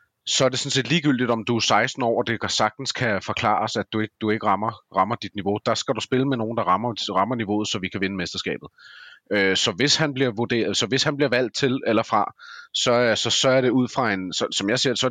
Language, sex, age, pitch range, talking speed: Danish, male, 30-49, 105-130 Hz, 240 wpm